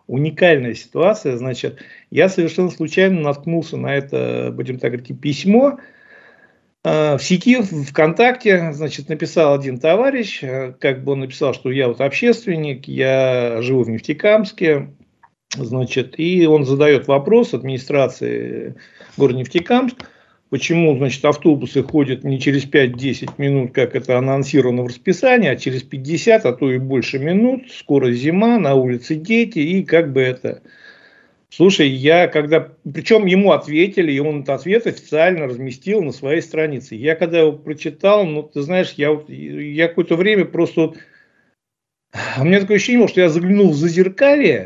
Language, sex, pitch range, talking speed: Russian, male, 135-185 Hz, 145 wpm